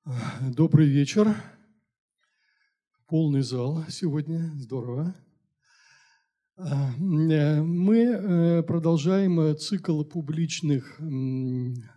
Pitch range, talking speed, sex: 130-180 Hz, 50 wpm, male